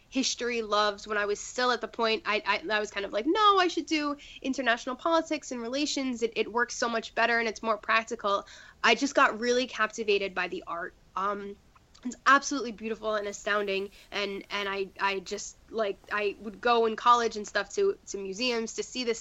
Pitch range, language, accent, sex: 205-245 Hz, English, American, female